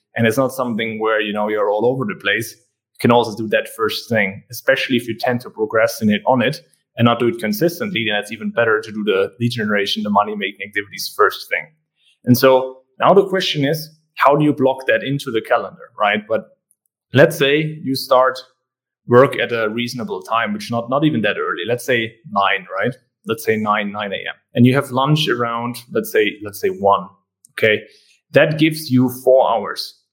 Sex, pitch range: male, 110-140 Hz